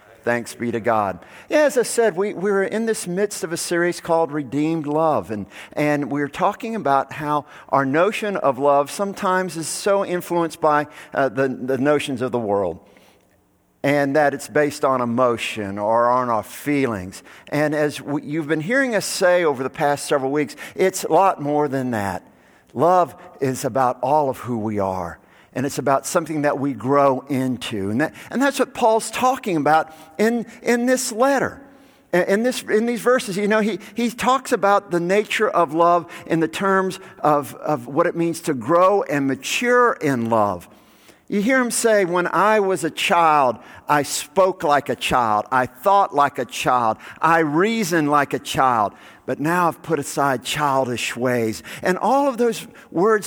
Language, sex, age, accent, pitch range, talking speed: English, male, 50-69, American, 140-215 Hz, 185 wpm